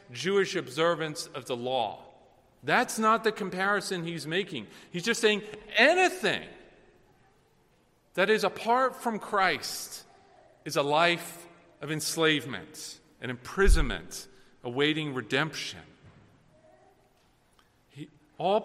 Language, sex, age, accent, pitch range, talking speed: English, male, 40-59, American, 165-235 Hz, 95 wpm